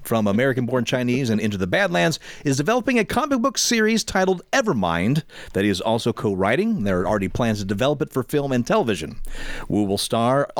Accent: American